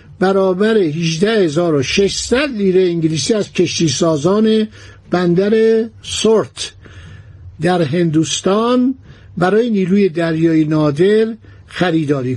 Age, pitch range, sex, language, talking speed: 60-79, 145-210 Hz, male, Persian, 80 wpm